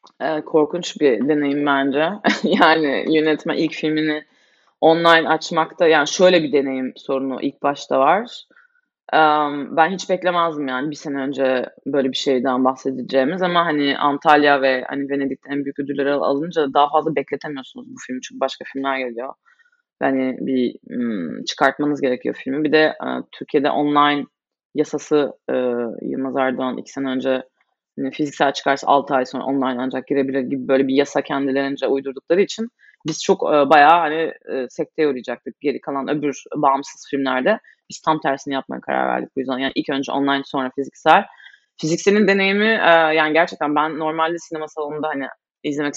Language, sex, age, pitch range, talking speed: Turkish, female, 20-39, 135-160 Hz, 150 wpm